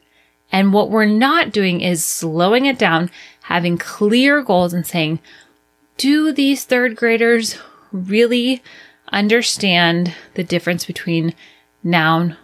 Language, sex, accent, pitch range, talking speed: English, female, American, 170-230 Hz, 115 wpm